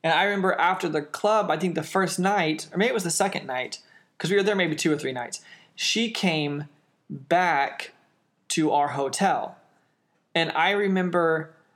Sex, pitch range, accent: male, 155-185 Hz, American